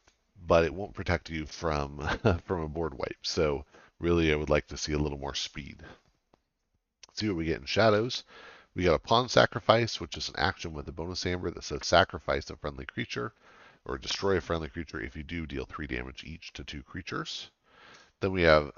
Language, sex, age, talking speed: English, male, 40-59, 210 wpm